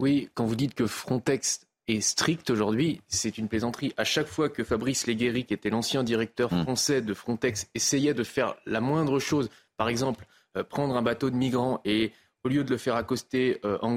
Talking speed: 200 wpm